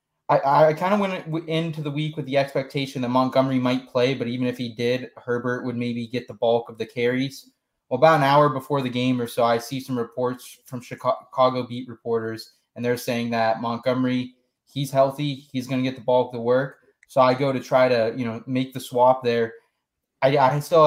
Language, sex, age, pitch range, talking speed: English, male, 20-39, 120-135 Hz, 220 wpm